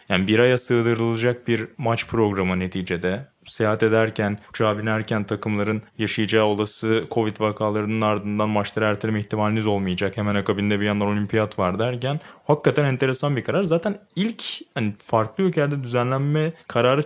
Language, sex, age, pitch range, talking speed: Turkish, male, 20-39, 110-145 Hz, 140 wpm